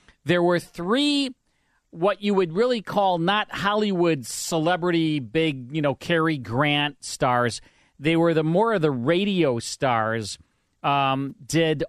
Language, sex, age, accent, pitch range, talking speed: English, male, 40-59, American, 125-170 Hz, 135 wpm